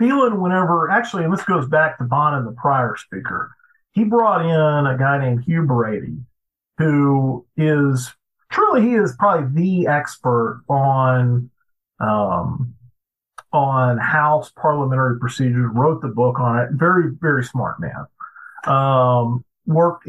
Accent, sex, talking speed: American, male, 135 wpm